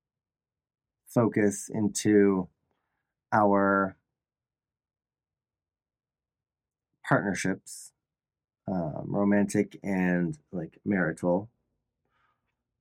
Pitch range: 100-125 Hz